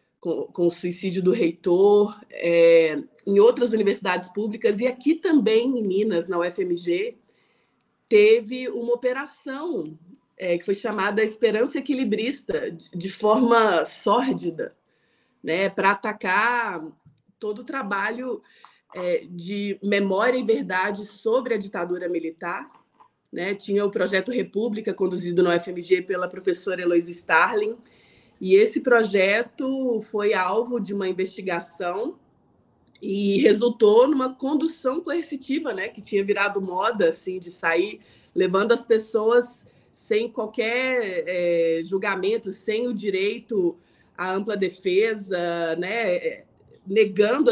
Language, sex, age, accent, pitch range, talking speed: Portuguese, female, 20-39, Brazilian, 185-240 Hz, 115 wpm